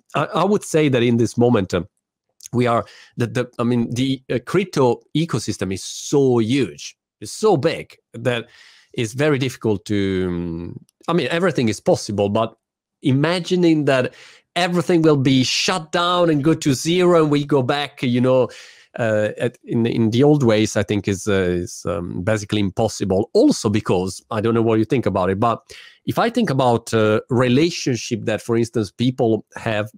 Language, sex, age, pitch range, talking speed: Italian, male, 40-59, 110-150 Hz, 180 wpm